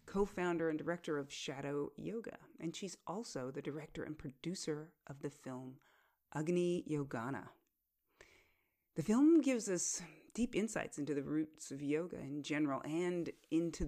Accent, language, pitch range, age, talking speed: American, English, 145-175 Hz, 30-49, 145 wpm